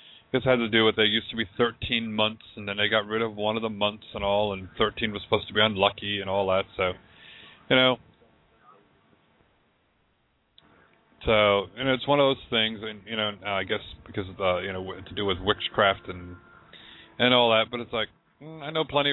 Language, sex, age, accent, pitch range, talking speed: English, male, 40-59, American, 100-130 Hz, 210 wpm